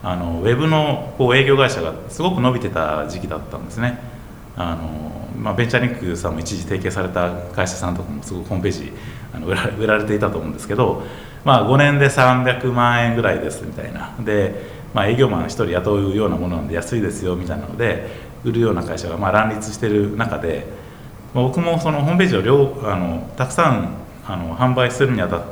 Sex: male